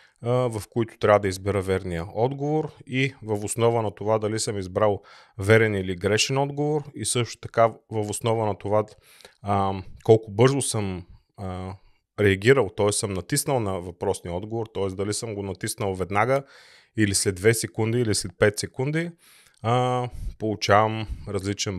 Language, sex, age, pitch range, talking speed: Bulgarian, male, 30-49, 100-120 Hz, 145 wpm